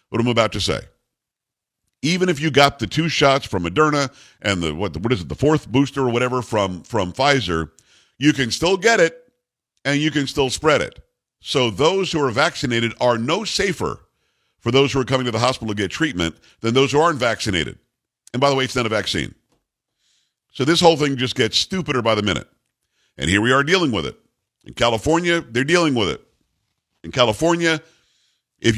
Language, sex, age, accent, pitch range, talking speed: English, male, 50-69, American, 115-150 Hz, 200 wpm